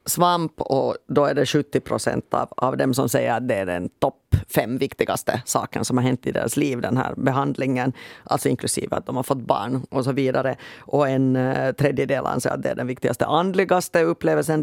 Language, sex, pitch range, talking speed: Swedish, female, 130-155 Hz, 200 wpm